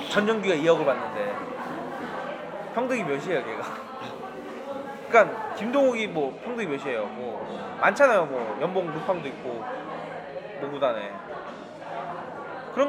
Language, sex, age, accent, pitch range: Korean, male, 20-39, native, 185-255 Hz